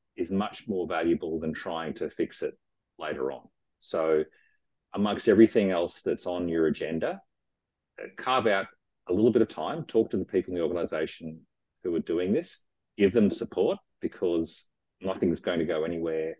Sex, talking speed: male, 170 wpm